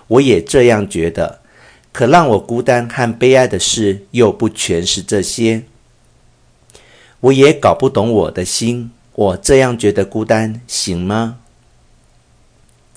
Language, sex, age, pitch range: Chinese, male, 50-69, 85-120 Hz